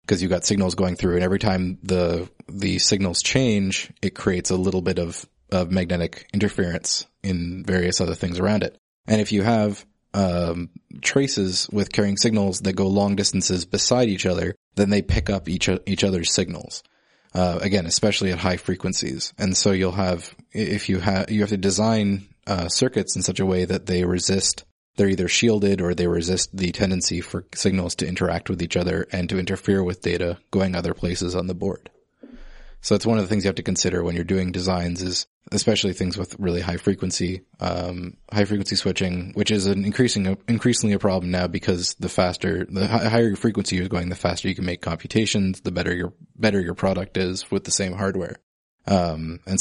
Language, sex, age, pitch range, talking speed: English, male, 20-39, 90-100 Hz, 200 wpm